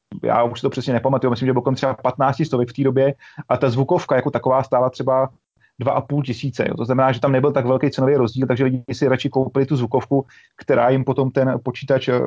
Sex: male